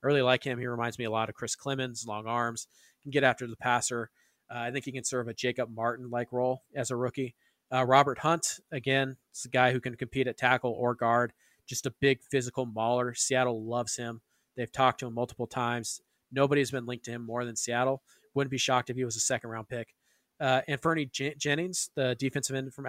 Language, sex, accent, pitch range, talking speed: English, male, American, 125-140 Hz, 230 wpm